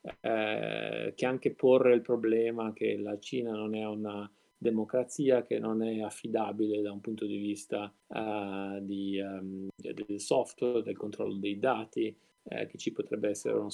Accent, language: native, Italian